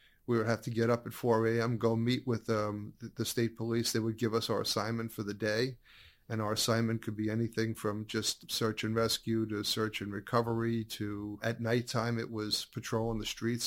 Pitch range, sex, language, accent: 110-115 Hz, male, English, American